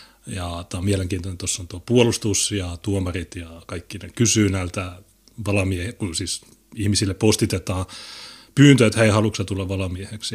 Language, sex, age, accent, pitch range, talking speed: Finnish, male, 30-49, native, 95-110 Hz, 140 wpm